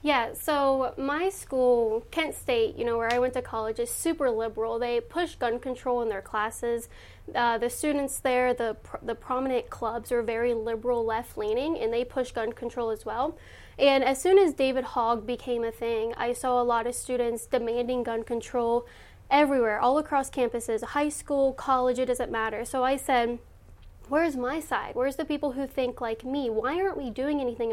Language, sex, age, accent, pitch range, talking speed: English, female, 10-29, American, 235-275 Hz, 190 wpm